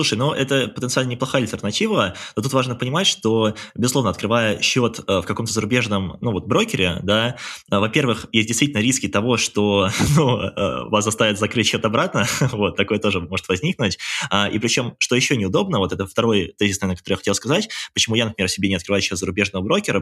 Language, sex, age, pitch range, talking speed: Russian, male, 20-39, 100-115 Hz, 185 wpm